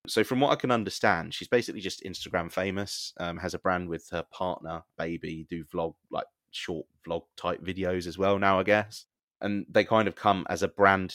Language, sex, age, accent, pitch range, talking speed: English, male, 20-39, British, 90-110 Hz, 210 wpm